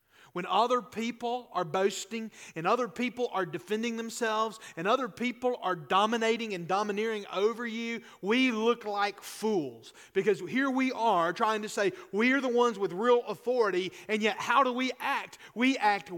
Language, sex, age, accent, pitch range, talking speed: English, male, 40-59, American, 205-270 Hz, 170 wpm